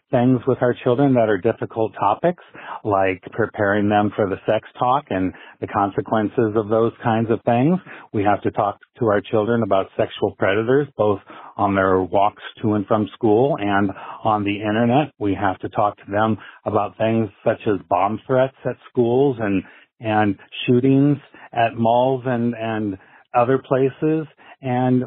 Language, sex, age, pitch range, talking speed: English, male, 40-59, 105-130 Hz, 165 wpm